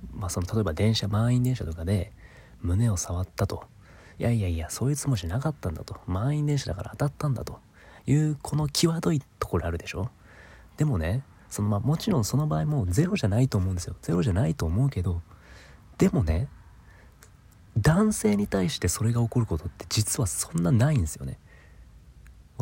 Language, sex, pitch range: Japanese, male, 90-125 Hz